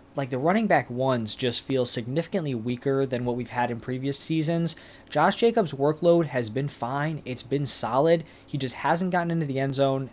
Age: 20-39